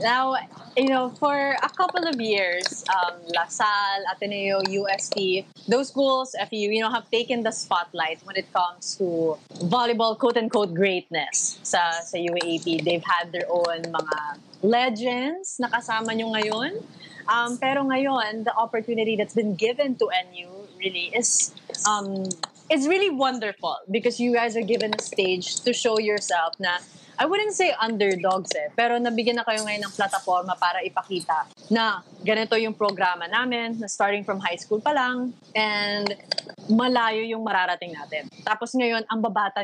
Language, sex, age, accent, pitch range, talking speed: English, female, 20-39, Filipino, 185-235 Hz, 160 wpm